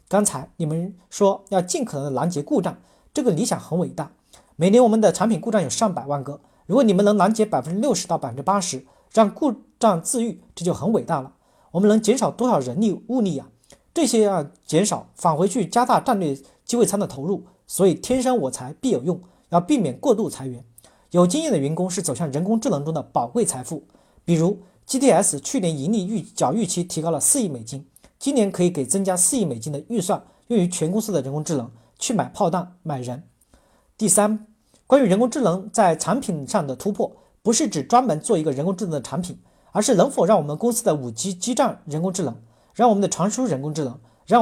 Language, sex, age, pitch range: Chinese, male, 40-59, 150-220 Hz